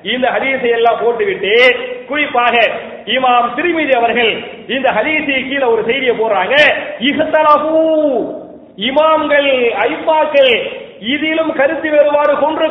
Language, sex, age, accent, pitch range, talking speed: English, male, 40-59, Indian, 255-315 Hz, 130 wpm